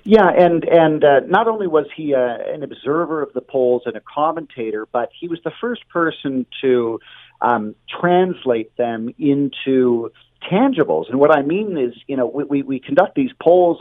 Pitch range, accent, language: 120-165 Hz, American, English